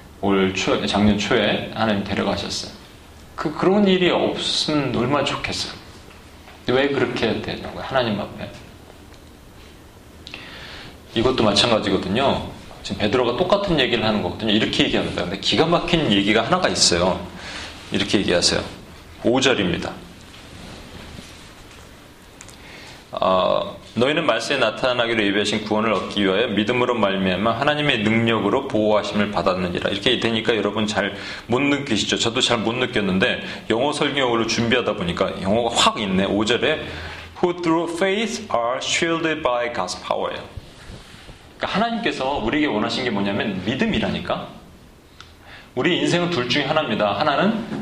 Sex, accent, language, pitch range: male, native, Korean, 95-125 Hz